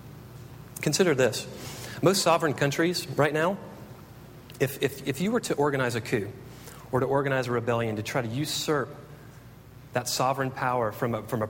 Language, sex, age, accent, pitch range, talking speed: English, male, 40-59, American, 120-145 Hz, 165 wpm